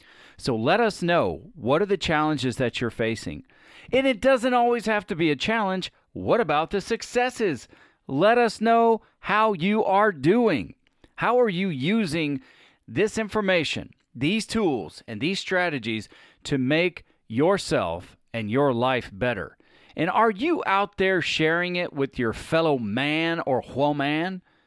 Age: 40-59